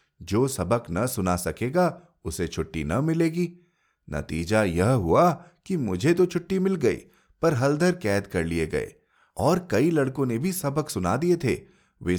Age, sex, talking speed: 30-49, male, 165 wpm